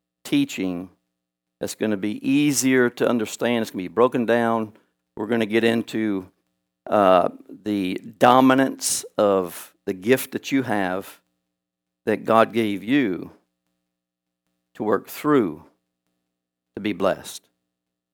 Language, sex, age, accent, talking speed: English, male, 60-79, American, 125 wpm